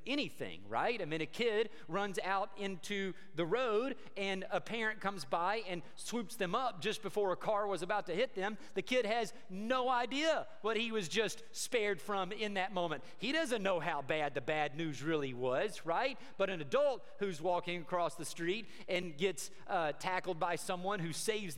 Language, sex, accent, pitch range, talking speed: English, male, American, 155-210 Hz, 195 wpm